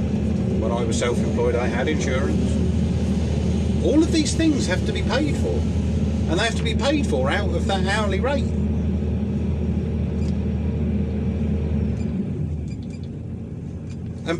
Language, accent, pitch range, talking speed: English, British, 85-100 Hz, 120 wpm